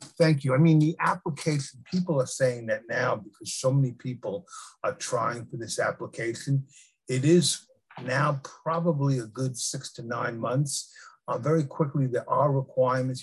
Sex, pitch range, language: male, 125-150 Hz, English